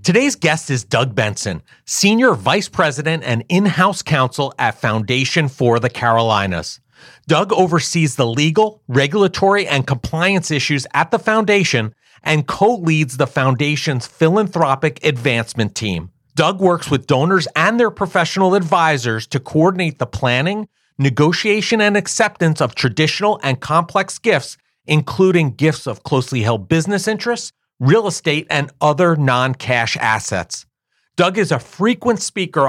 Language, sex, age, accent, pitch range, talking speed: English, male, 40-59, American, 130-185 Hz, 130 wpm